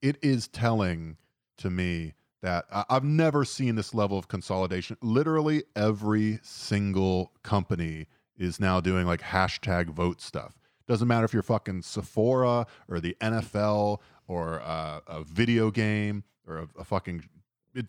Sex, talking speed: male, 145 wpm